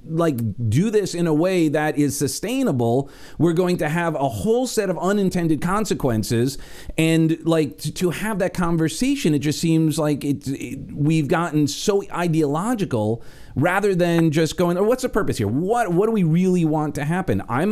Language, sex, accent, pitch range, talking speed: English, male, American, 130-175 Hz, 185 wpm